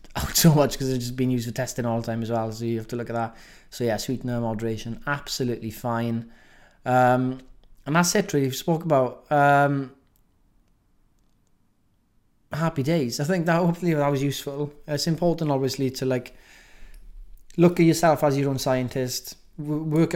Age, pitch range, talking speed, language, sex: 20-39, 120-145 Hz, 175 wpm, English, male